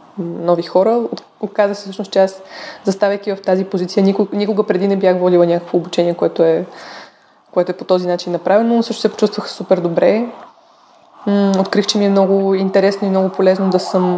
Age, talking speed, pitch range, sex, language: 20-39, 180 wpm, 180-210 Hz, female, Bulgarian